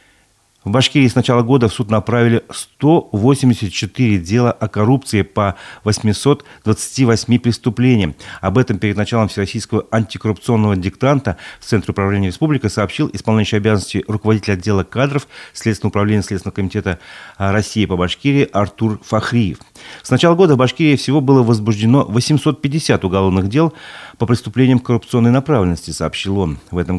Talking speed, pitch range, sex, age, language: 135 wpm, 100-125 Hz, male, 40-59, Russian